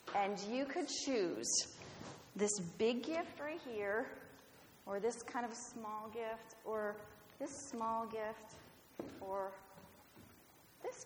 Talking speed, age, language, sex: 115 wpm, 30-49, English, female